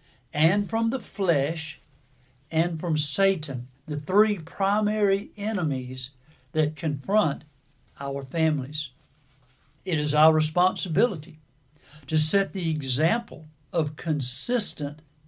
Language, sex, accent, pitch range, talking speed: English, male, American, 145-180 Hz, 100 wpm